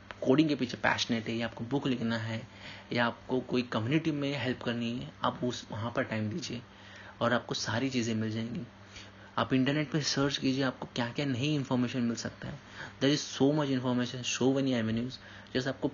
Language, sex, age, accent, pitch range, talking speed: Hindi, male, 30-49, native, 110-135 Hz, 200 wpm